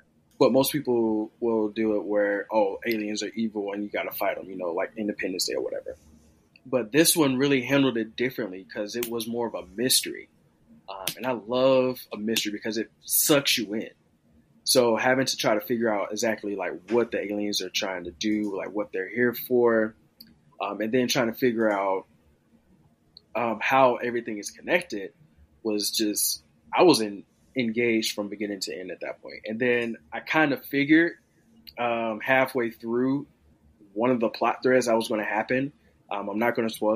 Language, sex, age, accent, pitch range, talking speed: English, male, 20-39, American, 105-125 Hz, 190 wpm